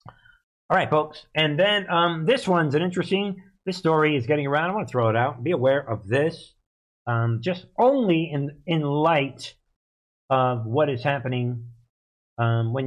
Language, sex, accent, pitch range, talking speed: English, male, American, 120-155 Hz, 170 wpm